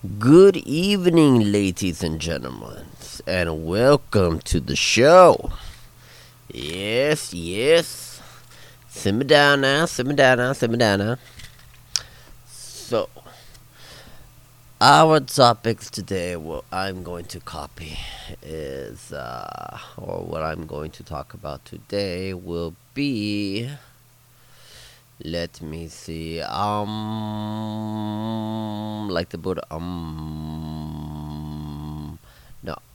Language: English